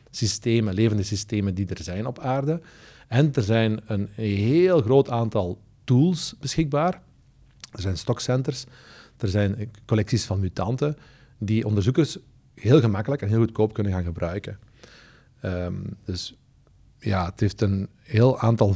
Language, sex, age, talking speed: Dutch, male, 40-59, 140 wpm